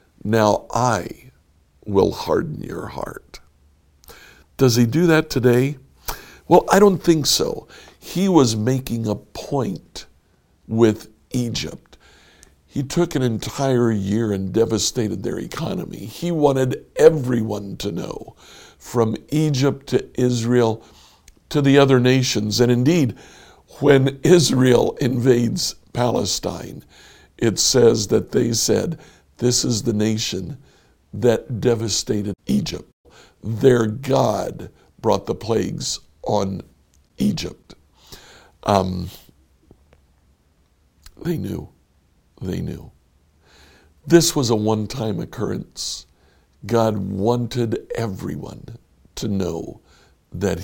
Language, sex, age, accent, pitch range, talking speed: English, male, 60-79, American, 105-130 Hz, 100 wpm